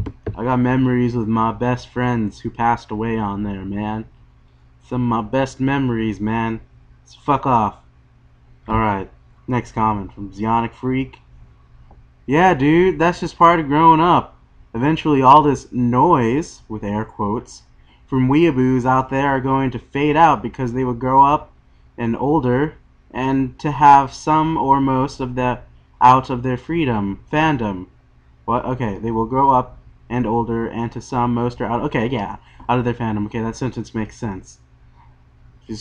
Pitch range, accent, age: 105-130 Hz, American, 20-39